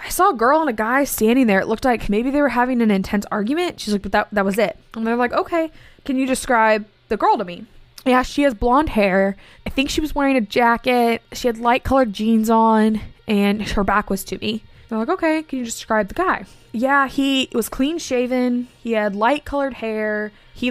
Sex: female